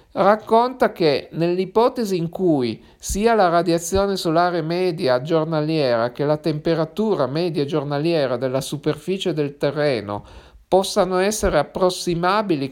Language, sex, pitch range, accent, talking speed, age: Italian, male, 150-185 Hz, native, 110 wpm, 50-69